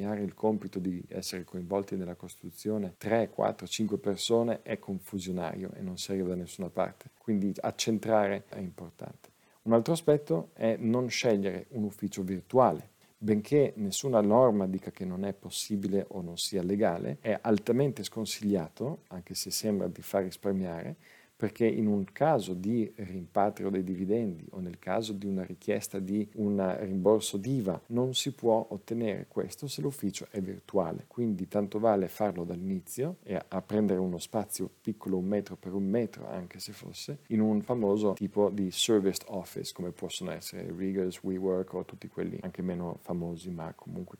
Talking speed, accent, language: 160 wpm, native, Italian